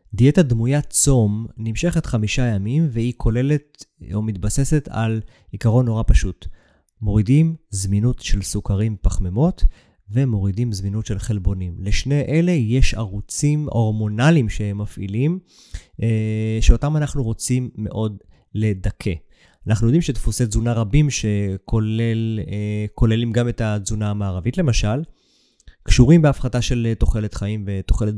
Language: Hebrew